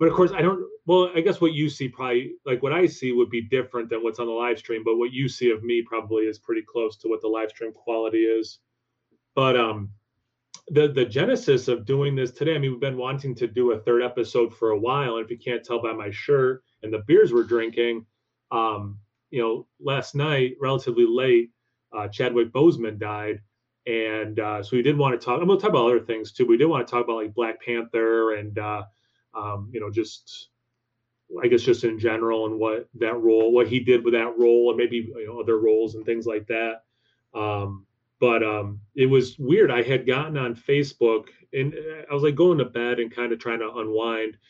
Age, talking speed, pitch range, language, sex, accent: 30-49, 225 wpm, 115-140 Hz, English, male, American